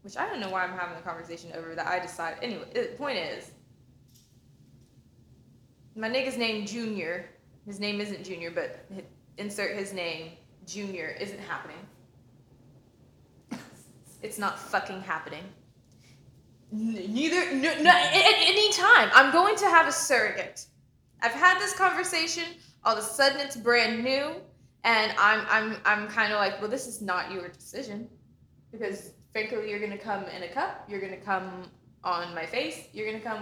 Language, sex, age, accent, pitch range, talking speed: English, female, 20-39, American, 180-235 Hz, 160 wpm